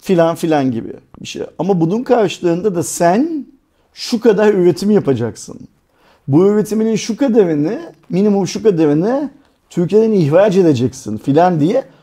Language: Turkish